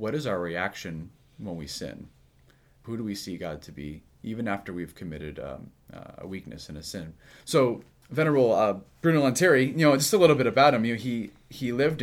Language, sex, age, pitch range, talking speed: English, male, 30-49, 85-130 Hz, 215 wpm